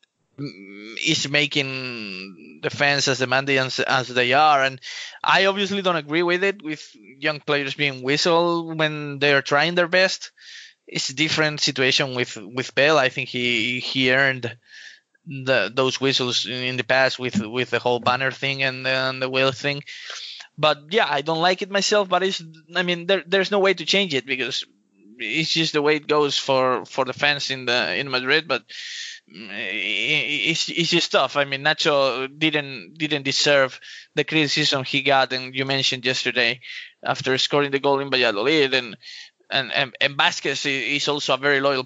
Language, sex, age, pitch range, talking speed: Persian, male, 20-39, 130-155 Hz, 180 wpm